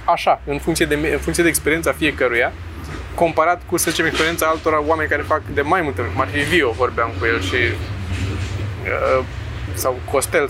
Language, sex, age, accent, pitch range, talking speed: Romanian, male, 20-39, native, 100-170 Hz, 160 wpm